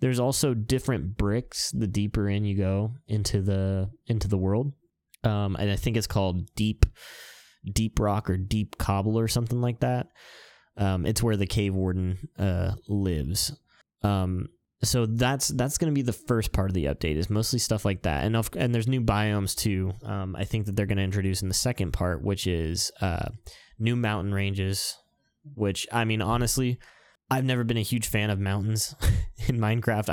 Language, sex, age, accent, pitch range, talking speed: English, male, 10-29, American, 95-115 Hz, 190 wpm